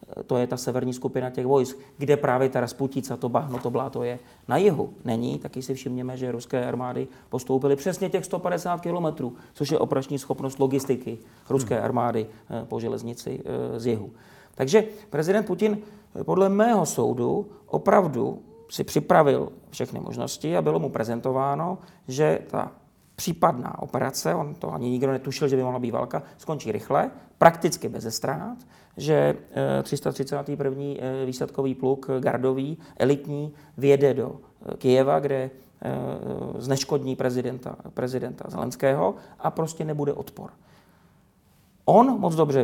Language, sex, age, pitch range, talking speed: Czech, male, 40-59, 125-150 Hz, 135 wpm